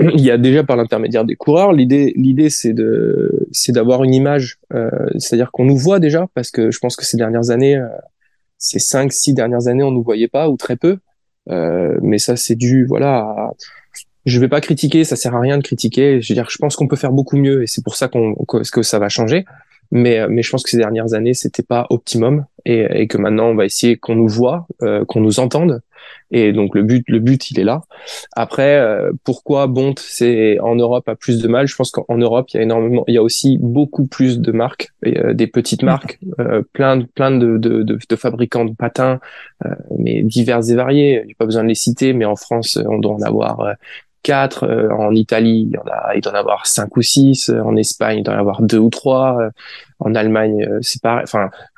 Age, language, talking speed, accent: 20-39, French, 240 wpm, French